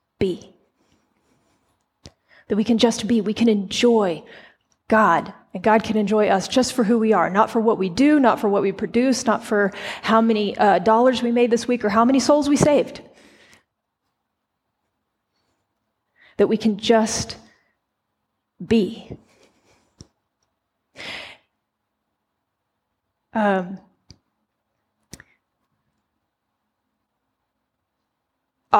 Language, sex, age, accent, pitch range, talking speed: English, female, 30-49, American, 205-230 Hz, 110 wpm